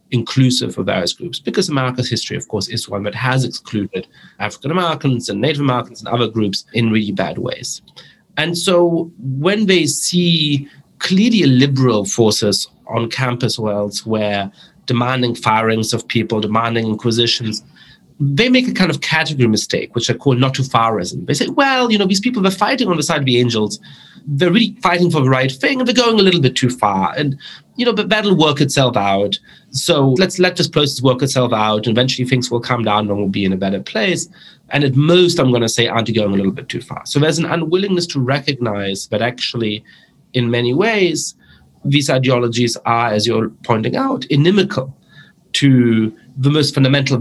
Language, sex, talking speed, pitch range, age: English, male, 190 wpm, 115-165 Hz, 30-49